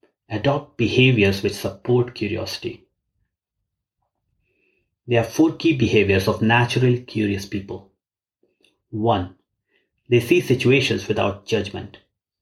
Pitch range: 100-125 Hz